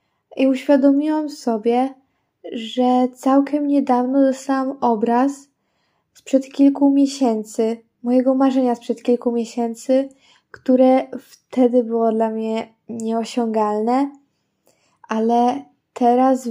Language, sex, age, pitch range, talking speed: Polish, female, 10-29, 235-260 Hz, 85 wpm